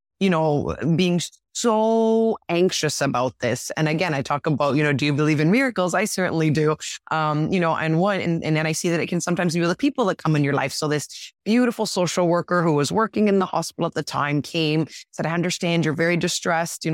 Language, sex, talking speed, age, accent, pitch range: English, female, 235 wpm, 20-39, American, 155-190 Hz